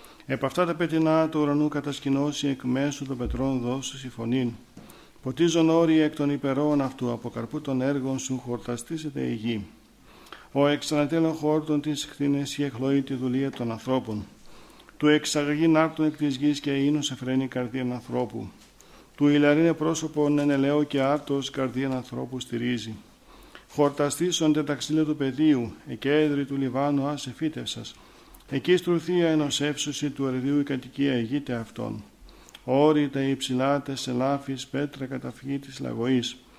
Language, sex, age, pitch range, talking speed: Greek, male, 50-69, 130-150 Hz, 140 wpm